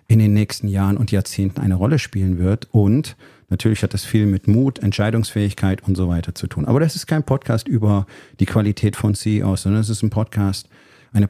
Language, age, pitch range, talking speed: German, 40-59, 95-110 Hz, 205 wpm